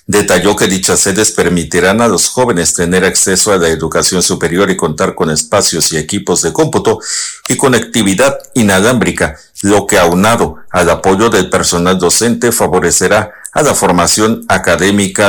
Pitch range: 85-100 Hz